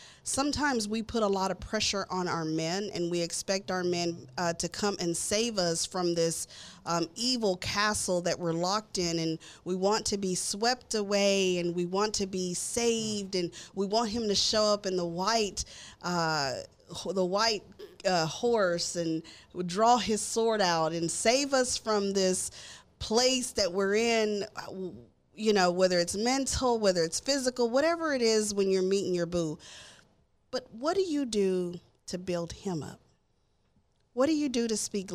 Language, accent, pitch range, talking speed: English, American, 175-225 Hz, 175 wpm